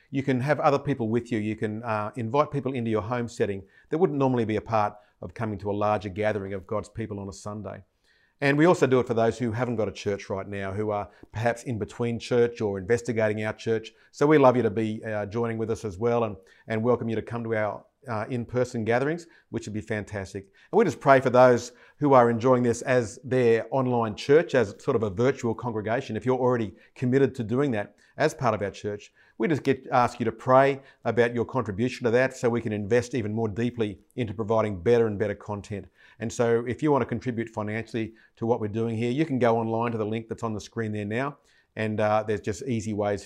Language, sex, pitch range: English, male, 105-125 Hz